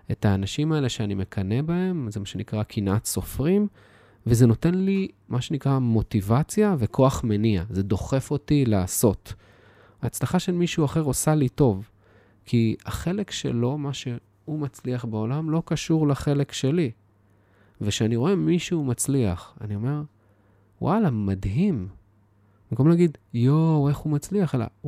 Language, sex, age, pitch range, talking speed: Hebrew, male, 20-39, 100-140 Hz, 135 wpm